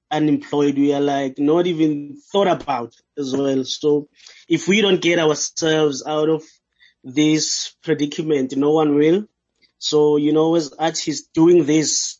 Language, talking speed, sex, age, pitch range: English, 150 wpm, male, 20-39, 140-160 Hz